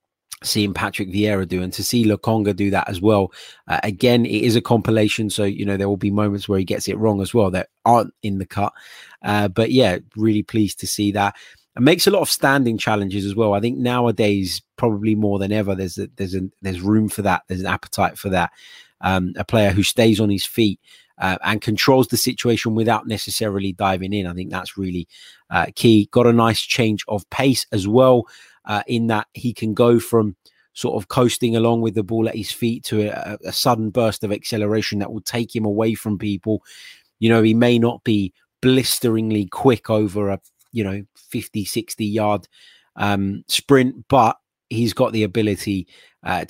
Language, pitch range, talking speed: English, 100-120 Hz, 200 wpm